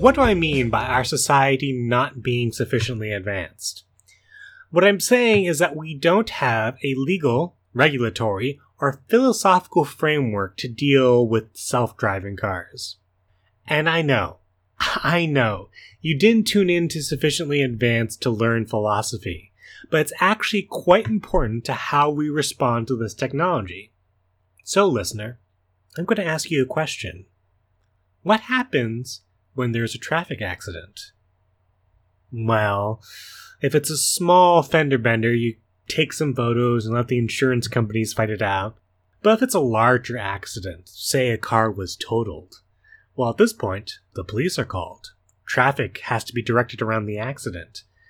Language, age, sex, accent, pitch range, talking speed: English, 30-49, male, American, 105-150 Hz, 150 wpm